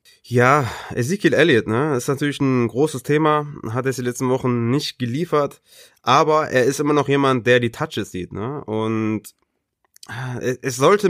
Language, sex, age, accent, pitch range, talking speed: German, male, 20-39, German, 115-140 Hz, 170 wpm